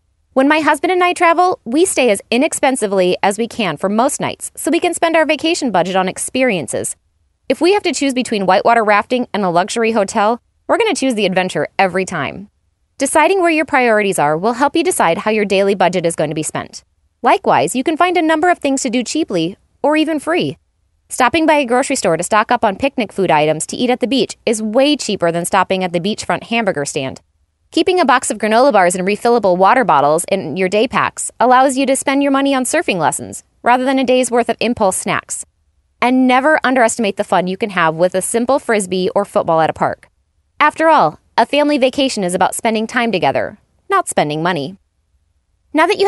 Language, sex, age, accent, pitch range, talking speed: English, female, 20-39, American, 185-280 Hz, 220 wpm